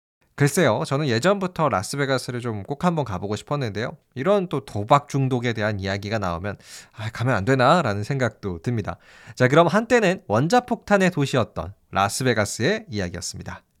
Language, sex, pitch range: Korean, male, 95-145 Hz